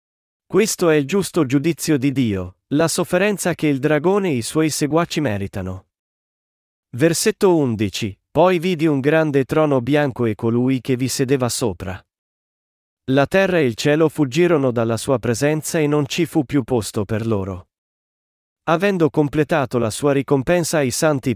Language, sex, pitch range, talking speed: Italian, male, 125-160 Hz, 155 wpm